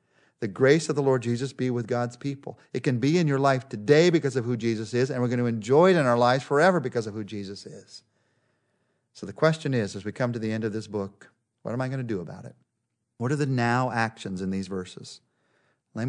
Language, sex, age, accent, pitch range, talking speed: English, male, 40-59, American, 115-155 Hz, 250 wpm